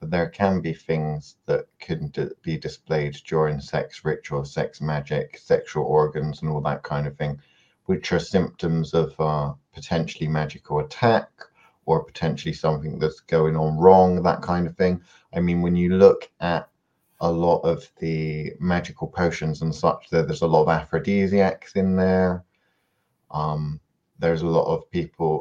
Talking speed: 160 wpm